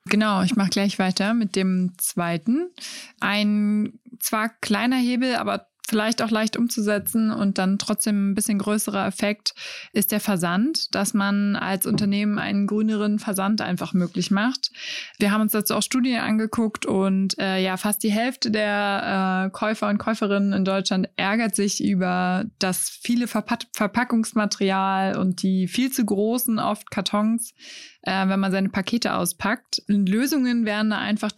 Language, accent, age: German, German, 20-39